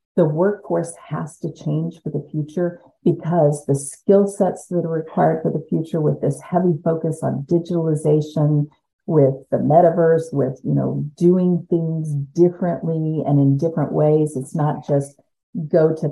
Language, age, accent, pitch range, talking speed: English, 50-69, American, 155-195 Hz, 155 wpm